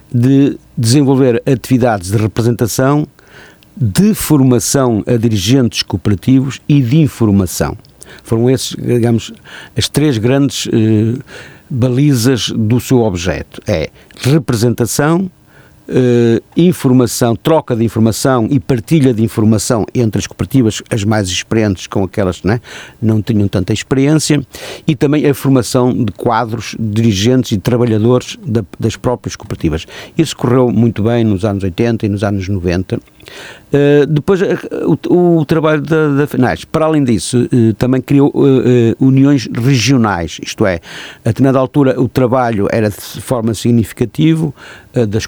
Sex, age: male, 50-69